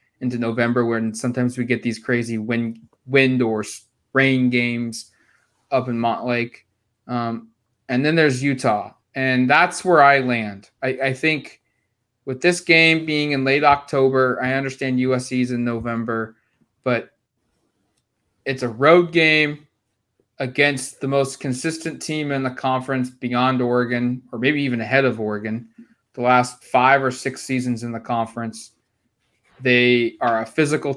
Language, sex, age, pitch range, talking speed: English, male, 20-39, 120-145 Hz, 145 wpm